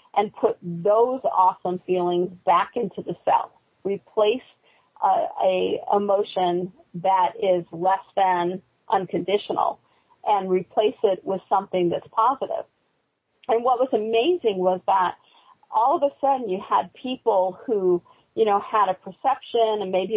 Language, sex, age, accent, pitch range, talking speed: English, female, 40-59, American, 185-230 Hz, 135 wpm